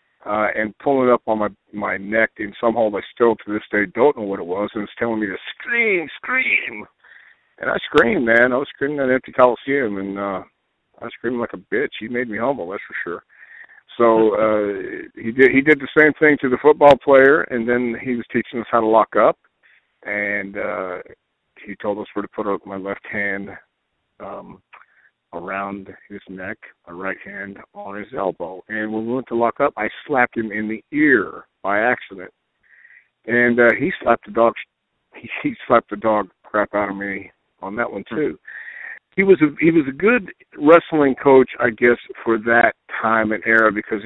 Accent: American